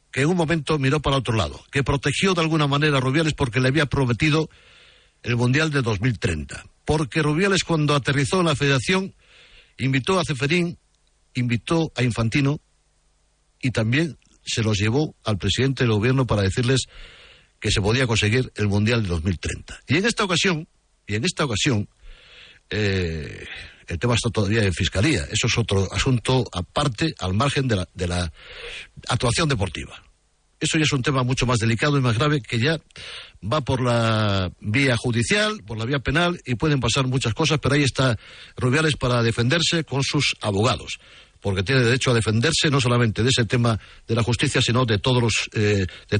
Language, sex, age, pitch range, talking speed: English, male, 60-79, 105-145 Hz, 175 wpm